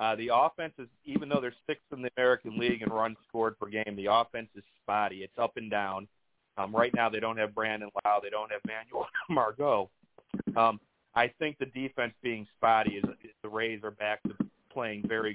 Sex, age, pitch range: male, 40-59, 105-120 Hz